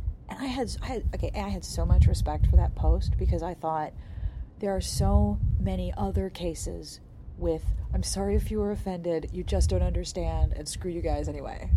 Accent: American